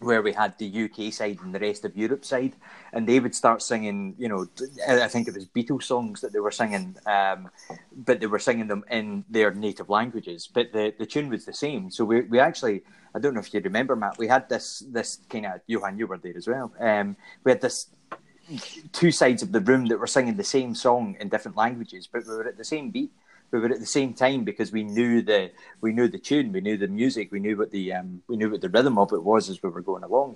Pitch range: 105-130 Hz